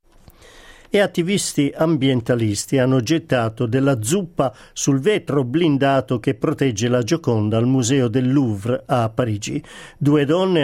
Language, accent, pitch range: Italian, native, 120-155 Hz